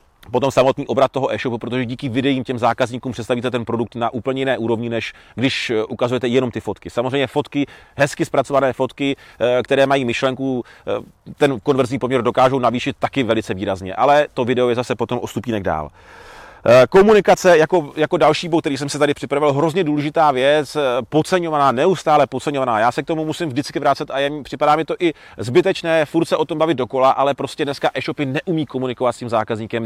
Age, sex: 30-49, male